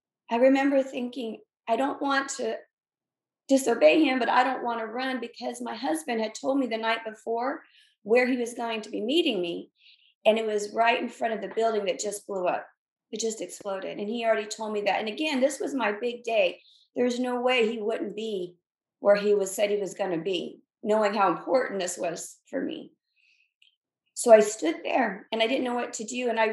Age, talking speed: 40-59, 215 wpm